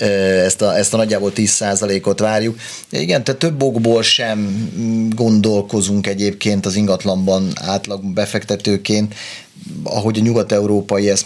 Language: Hungarian